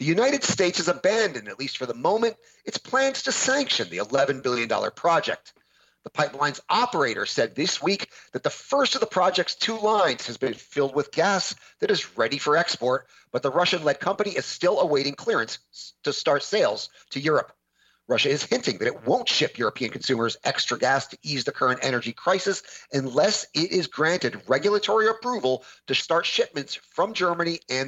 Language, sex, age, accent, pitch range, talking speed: English, male, 40-59, American, 130-200 Hz, 180 wpm